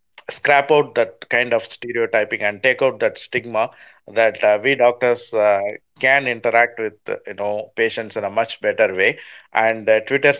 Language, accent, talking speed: Tamil, native, 180 wpm